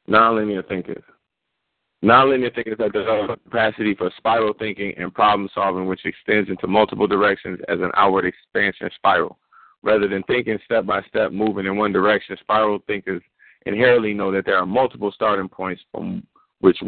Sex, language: male, English